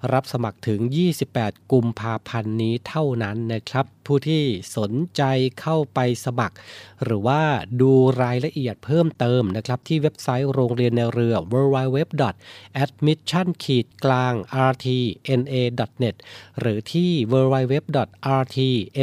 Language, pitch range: Thai, 115-140 Hz